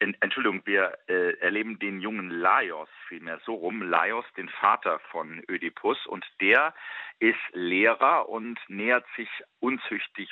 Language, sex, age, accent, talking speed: German, male, 40-59, German, 135 wpm